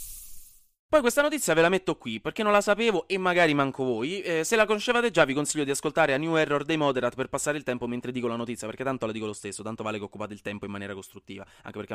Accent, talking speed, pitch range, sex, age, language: native, 270 wpm, 125-200 Hz, male, 20-39, Italian